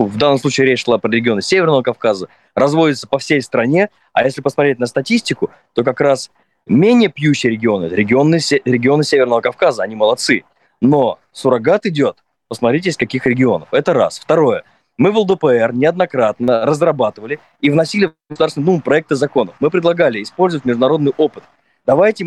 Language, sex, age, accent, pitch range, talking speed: Russian, male, 20-39, native, 130-170 Hz, 155 wpm